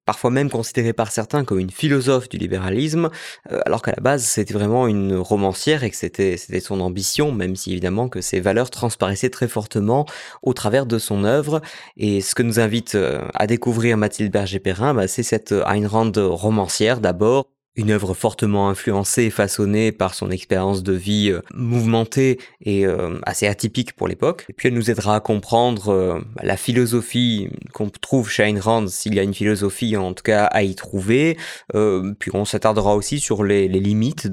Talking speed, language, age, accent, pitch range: 190 wpm, French, 20-39, French, 100-120 Hz